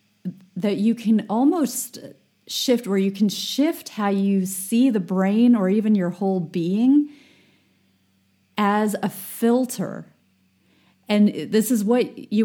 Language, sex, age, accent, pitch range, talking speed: English, female, 30-49, American, 175-205 Hz, 130 wpm